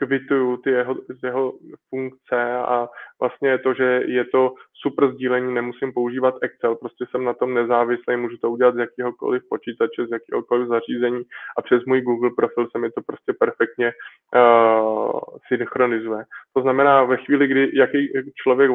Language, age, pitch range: Czech, 20-39, 120-130 Hz